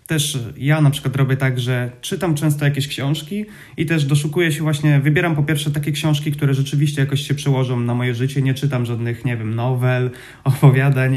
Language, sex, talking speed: Polish, male, 195 wpm